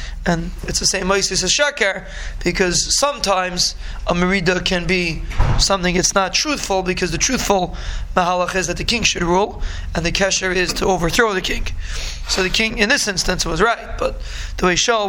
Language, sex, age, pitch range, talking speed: English, male, 20-39, 180-215 Hz, 185 wpm